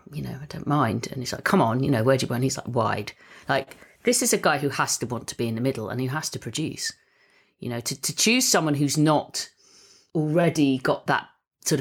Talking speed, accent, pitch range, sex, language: 260 wpm, British, 125-175 Hz, female, English